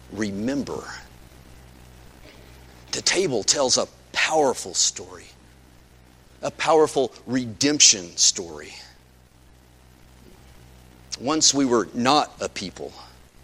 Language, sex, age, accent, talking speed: English, male, 40-59, American, 75 wpm